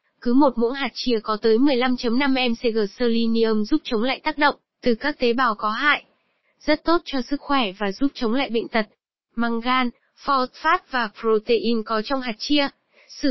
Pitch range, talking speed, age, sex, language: 225-280 Hz, 195 wpm, 20-39, female, Vietnamese